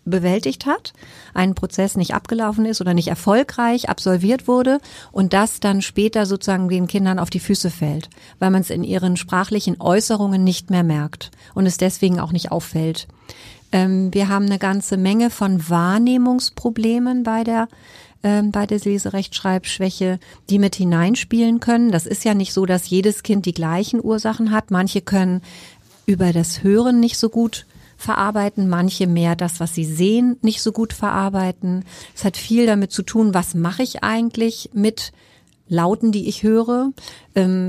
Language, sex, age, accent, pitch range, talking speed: German, female, 50-69, German, 185-215 Hz, 165 wpm